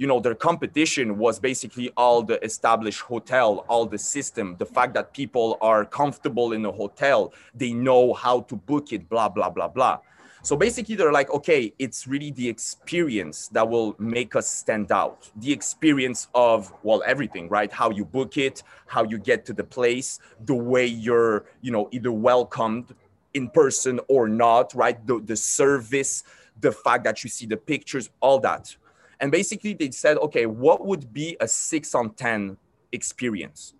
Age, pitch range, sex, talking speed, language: 30-49, 115-150 Hz, male, 180 wpm, English